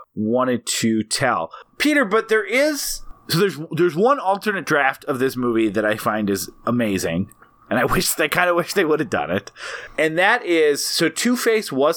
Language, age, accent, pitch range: English, 30-49, American, 135-200 Hz